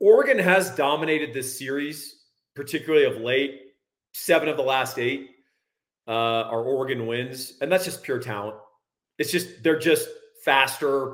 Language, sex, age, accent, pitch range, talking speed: English, male, 40-59, American, 125-175 Hz, 145 wpm